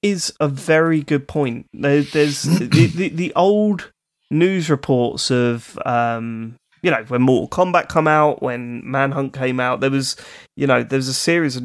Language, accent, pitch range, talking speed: English, British, 120-145 Hz, 175 wpm